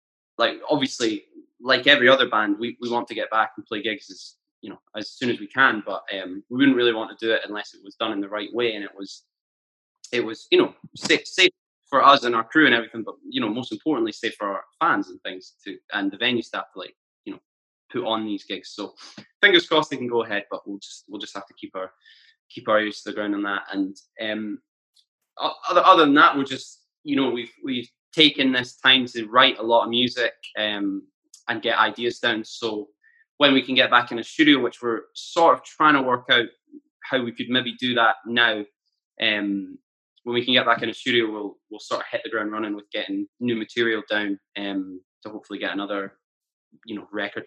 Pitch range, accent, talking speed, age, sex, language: 105-170 Hz, British, 230 wpm, 20-39, male, English